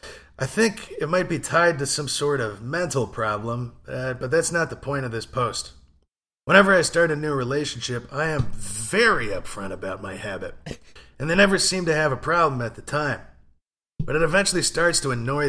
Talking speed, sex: 200 wpm, male